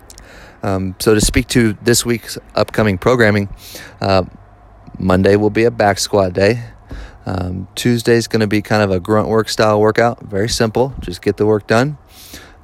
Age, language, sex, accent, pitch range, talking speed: 30-49, English, male, American, 95-110 Hz, 170 wpm